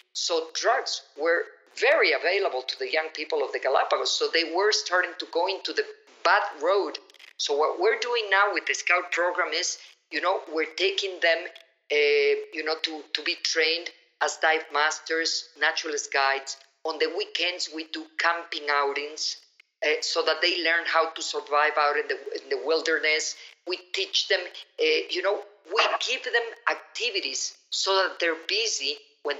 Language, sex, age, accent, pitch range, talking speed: English, female, 50-69, Mexican, 160-215 Hz, 170 wpm